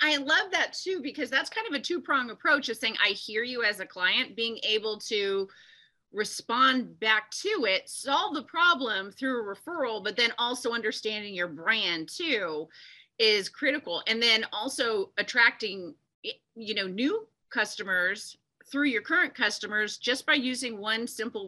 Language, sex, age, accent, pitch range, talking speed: English, female, 30-49, American, 200-270 Hz, 165 wpm